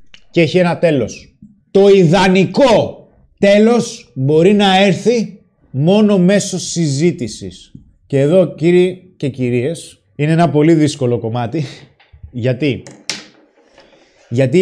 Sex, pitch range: male, 110-160 Hz